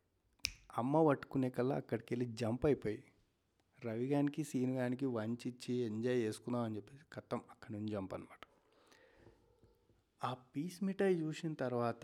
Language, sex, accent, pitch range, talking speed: Telugu, male, native, 100-125 Hz, 125 wpm